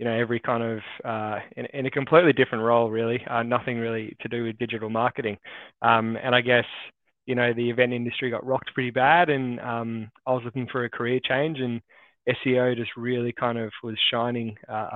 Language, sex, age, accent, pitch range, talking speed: English, male, 20-39, Australian, 115-130 Hz, 210 wpm